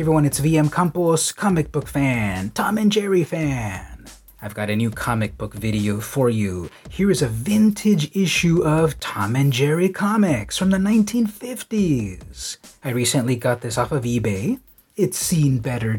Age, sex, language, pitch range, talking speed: 30-49, male, English, 125-180 Hz, 165 wpm